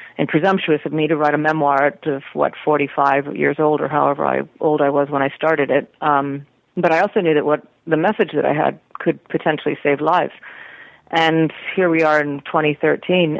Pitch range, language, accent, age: 145-160 Hz, English, American, 40-59